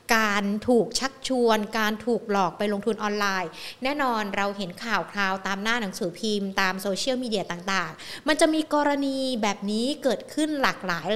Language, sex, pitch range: Thai, female, 195-255 Hz